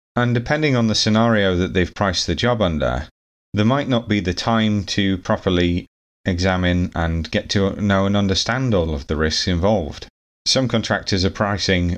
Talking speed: 175 wpm